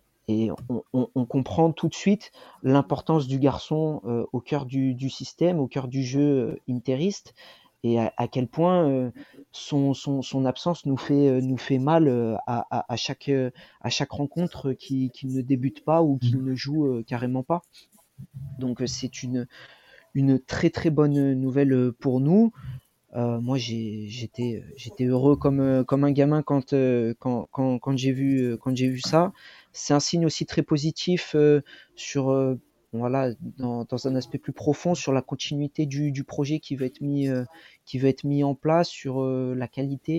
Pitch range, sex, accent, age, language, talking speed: 125-145 Hz, male, French, 40-59, French, 195 wpm